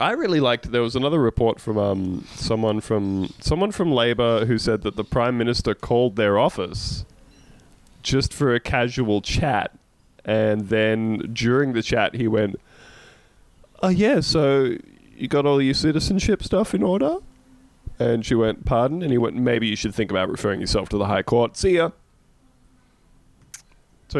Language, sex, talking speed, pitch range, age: English, male, 165 wpm, 100-135 Hz, 20-39